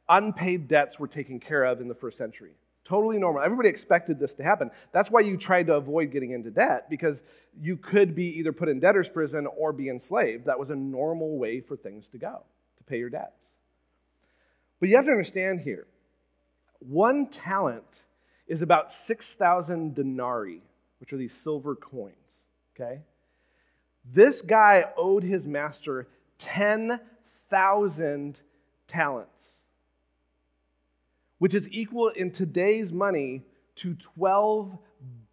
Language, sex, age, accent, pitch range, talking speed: English, male, 40-59, American, 135-205 Hz, 145 wpm